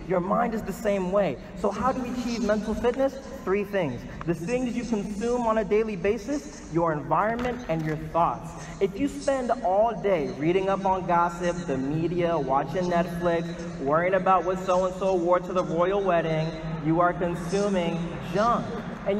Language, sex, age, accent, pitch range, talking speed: English, male, 30-49, American, 170-240 Hz, 170 wpm